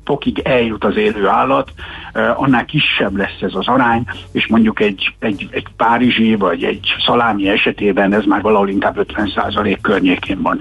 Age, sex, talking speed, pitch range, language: 60-79, male, 165 wpm, 120-160 Hz, Hungarian